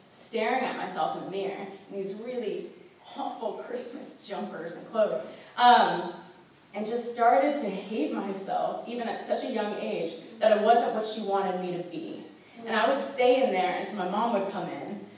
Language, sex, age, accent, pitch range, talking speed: English, female, 20-39, American, 195-255 Hz, 195 wpm